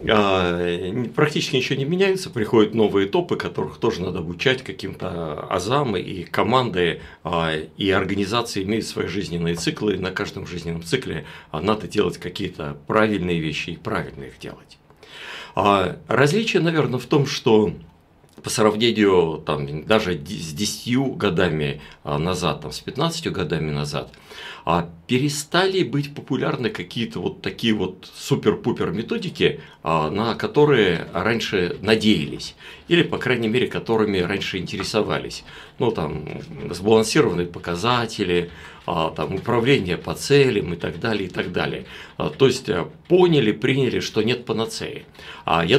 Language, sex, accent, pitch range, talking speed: Russian, male, native, 85-140 Hz, 125 wpm